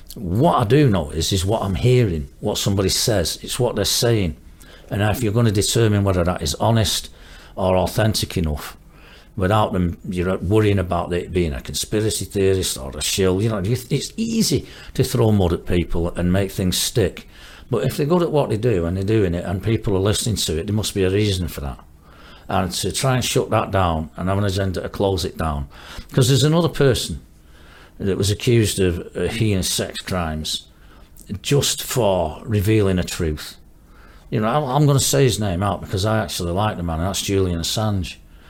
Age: 60-79